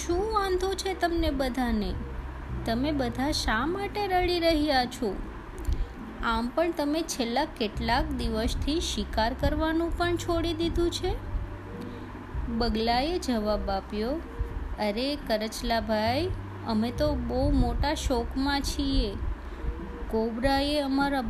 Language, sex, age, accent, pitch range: Gujarati, female, 20-39, native, 200-290 Hz